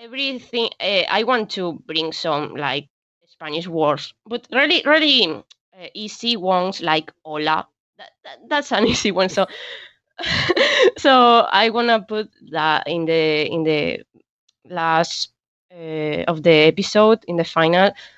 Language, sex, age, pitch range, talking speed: English, female, 20-39, 165-230 Hz, 140 wpm